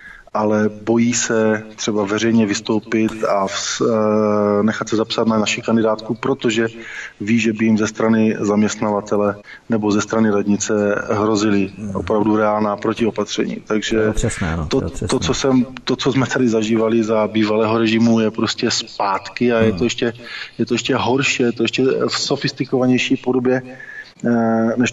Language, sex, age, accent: Czech, male, 20-39, native